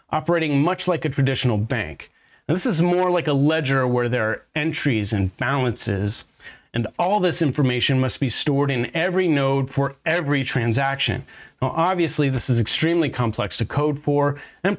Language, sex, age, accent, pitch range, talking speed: English, male, 30-49, American, 120-155 Hz, 170 wpm